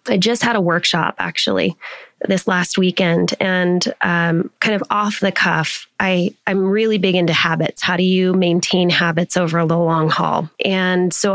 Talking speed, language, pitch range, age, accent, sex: 175 wpm, English, 175-205 Hz, 20-39, American, female